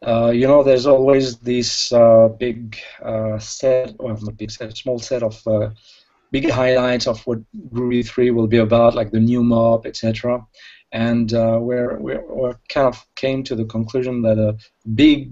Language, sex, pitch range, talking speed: English, male, 115-130 Hz, 180 wpm